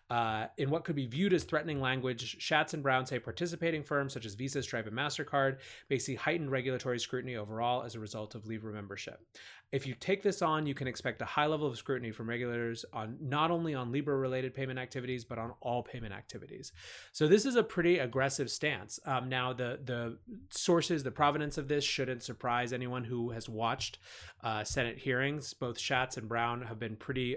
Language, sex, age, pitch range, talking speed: English, male, 30-49, 115-140 Hz, 200 wpm